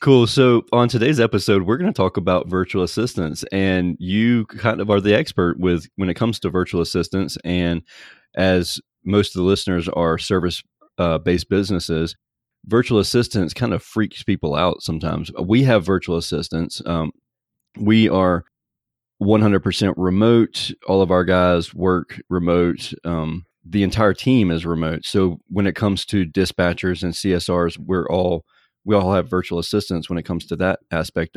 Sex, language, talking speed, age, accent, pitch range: male, English, 165 wpm, 30-49, American, 85-105 Hz